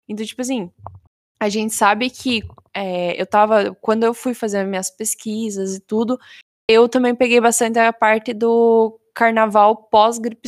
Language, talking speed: Portuguese, 150 wpm